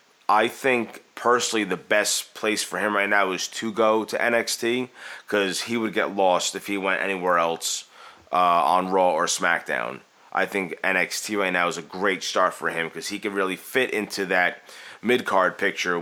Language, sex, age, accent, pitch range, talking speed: English, male, 30-49, American, 90-110 Hz, 185 wpm